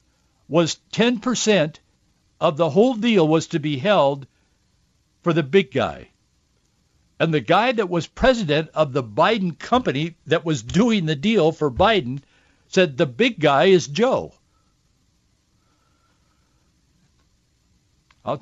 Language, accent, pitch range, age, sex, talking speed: English, American, 135-185 Hz, 60-79, male, 125 wpm